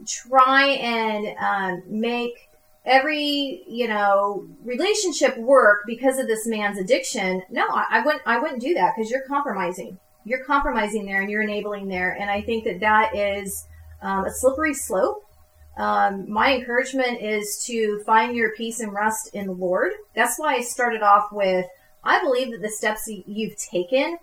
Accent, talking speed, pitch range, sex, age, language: American, 170 wpm, 200-255 Hz, female, 30-49, English